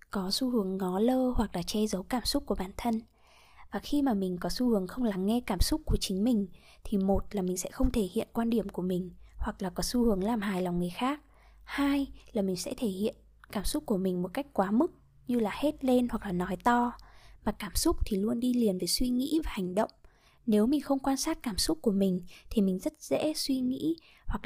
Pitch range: 195-255 Hz